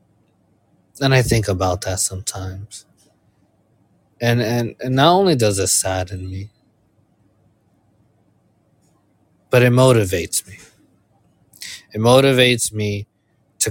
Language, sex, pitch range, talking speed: English, male, 100-115 Hz, 100 wpm